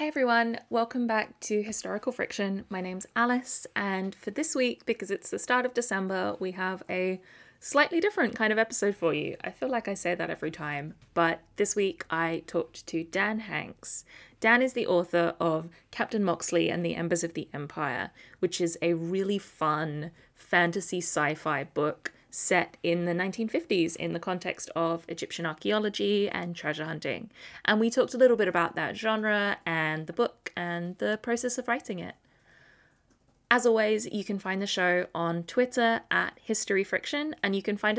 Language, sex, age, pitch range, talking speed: English, female, 20-39, 170-230 Hz, 180 wpm